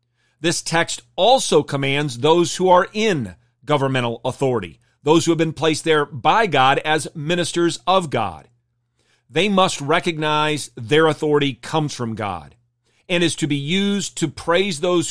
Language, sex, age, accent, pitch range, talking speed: English, male, 40-59, American, 120-170 Hz, 150 wpm